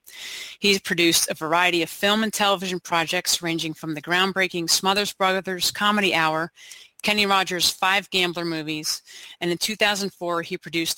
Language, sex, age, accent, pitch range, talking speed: English, female, 30-49, American, 165-190 Hz, 150 wpm